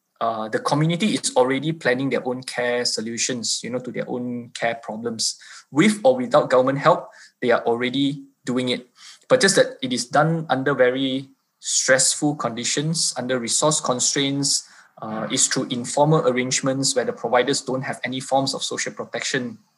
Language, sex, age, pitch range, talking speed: English, male, 20-39, 125-160 Hz, 165 wpm